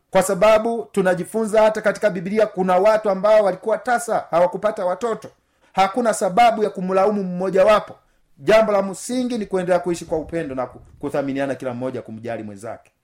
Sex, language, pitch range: male, Swahili, 180-225 Hz